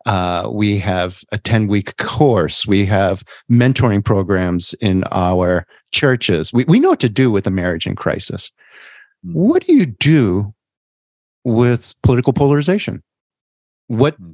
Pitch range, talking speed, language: 100-135 Hz, 135 wpm, English